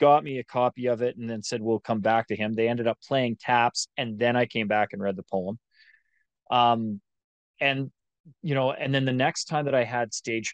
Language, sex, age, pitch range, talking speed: English, male, 30-49, 105-125 Hz, 235 wpm